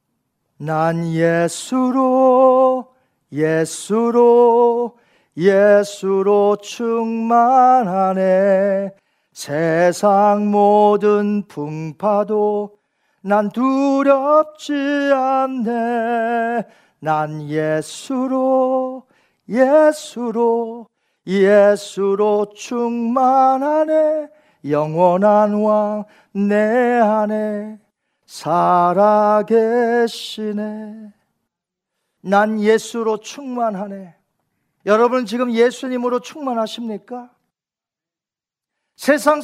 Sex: male